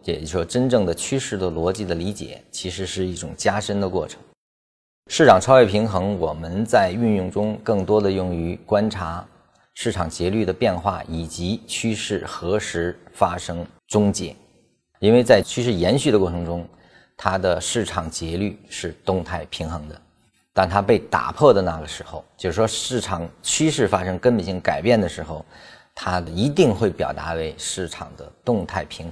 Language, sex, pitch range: Chinese, male, 80-105 Hz